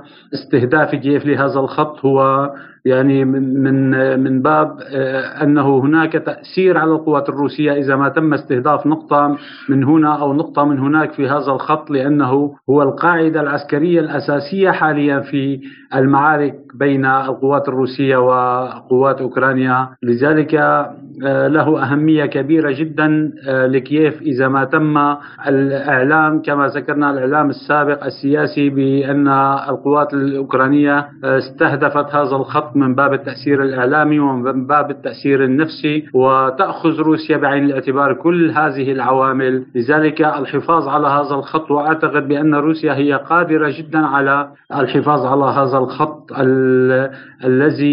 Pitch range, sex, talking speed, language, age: 135-150 Hz, male, 120 wpm, Arabic, 50-69